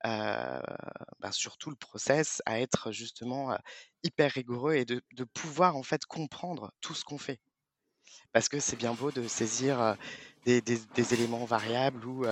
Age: 20-39